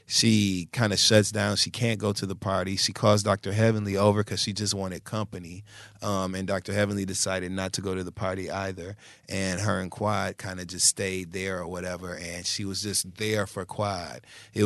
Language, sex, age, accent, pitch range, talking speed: English, male, 30-49, American, 95-110 Hz, 215 wpm